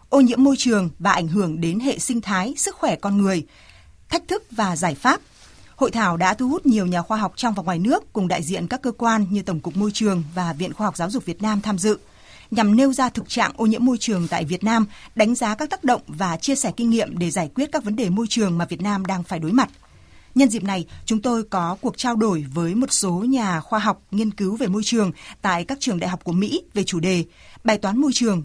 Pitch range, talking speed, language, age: 190-235 Hz, 265 wpm, Vietnamese, 20-39